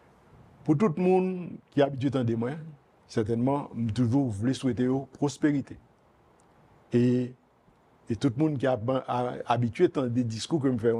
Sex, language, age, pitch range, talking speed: male, French, 50-69, 125-145 Hz, 135 wpm